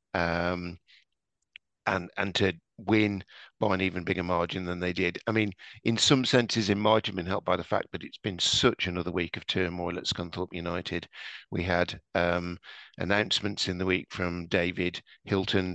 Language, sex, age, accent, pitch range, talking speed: English, male, 50-69, British, 90-100 Hz, 180 wpm